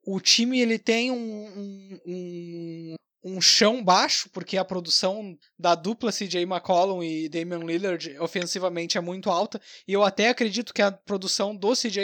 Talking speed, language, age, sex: 150 wpm, Portuguese, 20-39, male